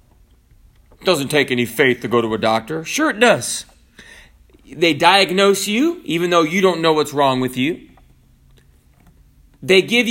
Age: 30-49